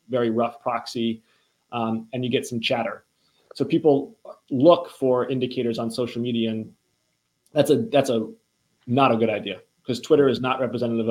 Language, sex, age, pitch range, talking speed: English, male, 20-39, 110-125 Hz, 165 wpm